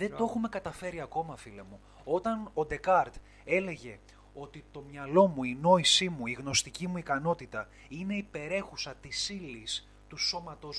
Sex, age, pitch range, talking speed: male, 30-49, 110-165 Hz, 155 wpm